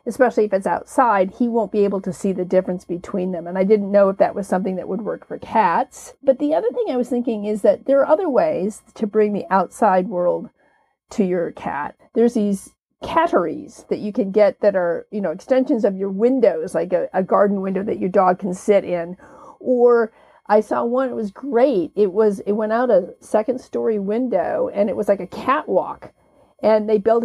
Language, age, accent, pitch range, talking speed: English, 50-69, American, 200-250 Hz, 220 wpm